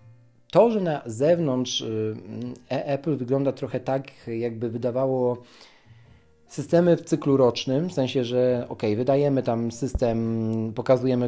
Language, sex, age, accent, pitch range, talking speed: Polish, male, 40-59, native, 110-135 Hz, 115 wpm